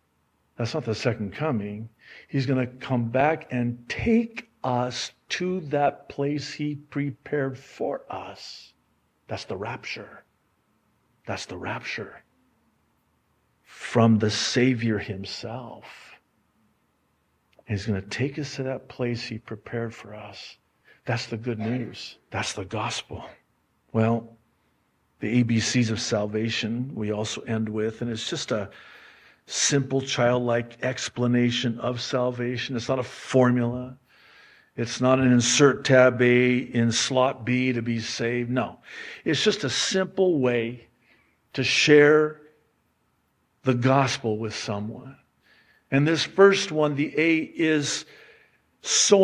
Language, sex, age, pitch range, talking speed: English, male, 50-69, 115-150 Hz, 125 wpm